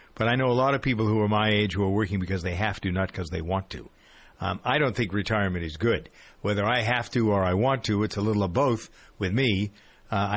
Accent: American